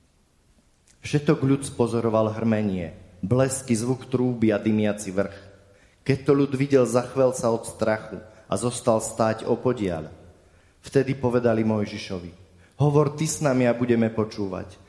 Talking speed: 135 wpm